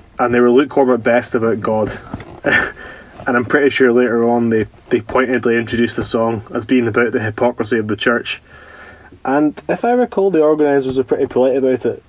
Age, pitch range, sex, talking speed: 20-39, 115-135 Hz, male, 195 wpm